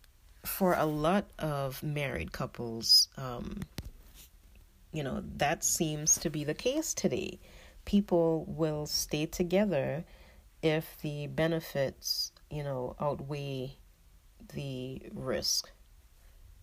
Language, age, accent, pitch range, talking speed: English, 40-59, American, 120-170 Hz, 100 wpm